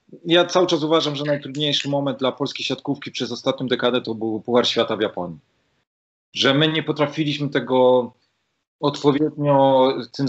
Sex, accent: male, native